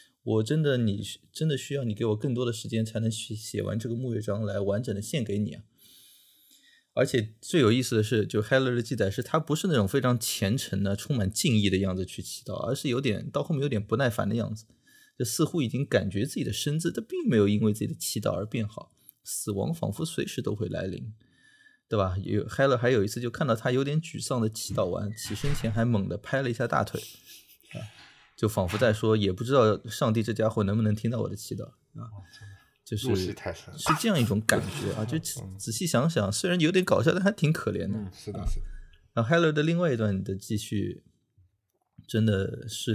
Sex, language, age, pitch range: male, Chinese, 20-39, 100-125 Hz